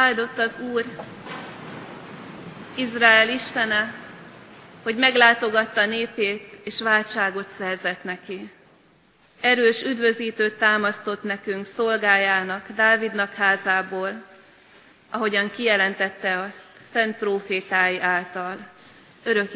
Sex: female